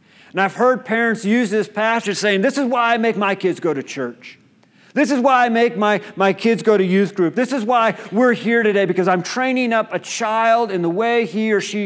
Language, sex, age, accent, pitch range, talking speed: English, male, 40-59, American, 200-245 Hz, 245 wpm